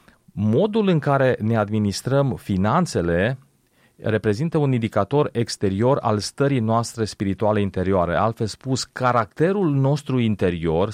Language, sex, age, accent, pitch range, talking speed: Romanian, male, 30-49, native, 105-125 Hz, 110 wpm